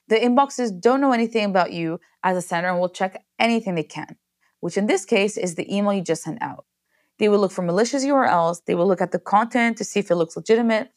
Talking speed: 245 wpm